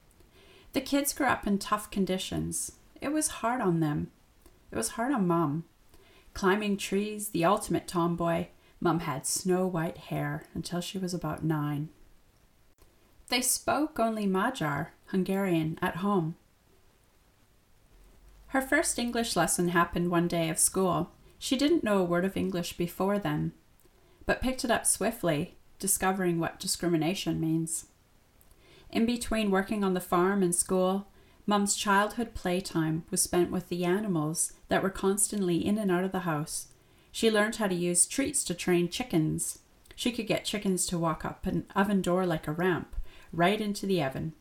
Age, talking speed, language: 30-49, 160 wpm, English